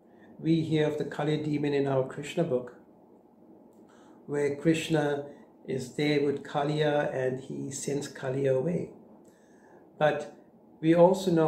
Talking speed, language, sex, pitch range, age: 130 wpm, English, male, 140-165 Hz, 60-79